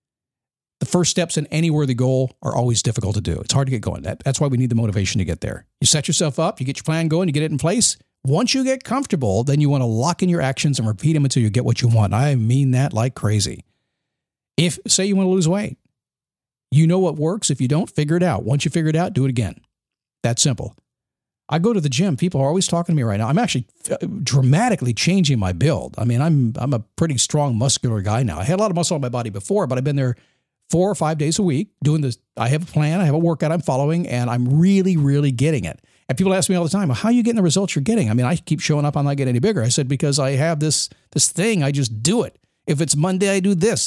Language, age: English, 50-69